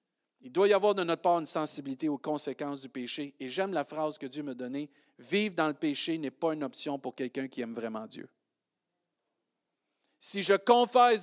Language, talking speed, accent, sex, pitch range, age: French, 215 wpm, Canadian, male, 145-190 Hz, 50-69